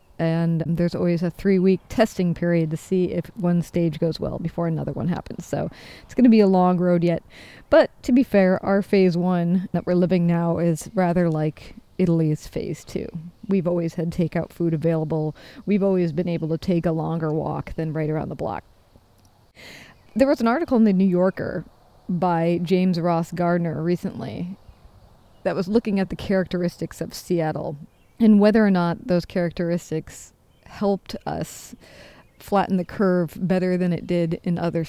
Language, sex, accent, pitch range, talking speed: English, female, American, 170-195 Hz, 175 wpm